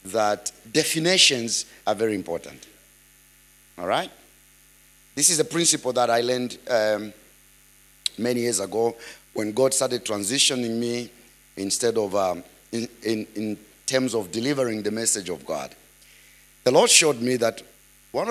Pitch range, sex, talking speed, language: 95-140 Hz, male, 140 wpm, English